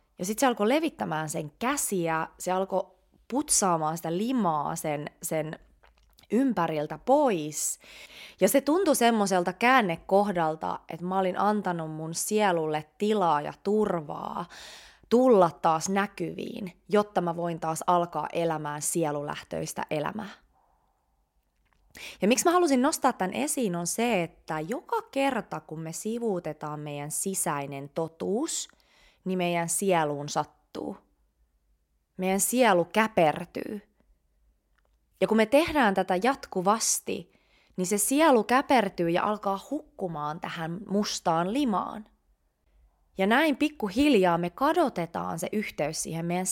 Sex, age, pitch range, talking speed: female, 20-39, 160-235 Hz, 115 wpm